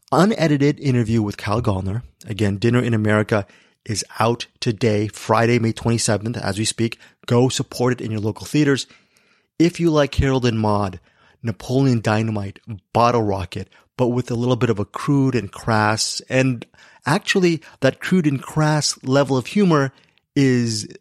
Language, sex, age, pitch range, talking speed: English, male, 30-49, 110-130 Hz, 155 wpm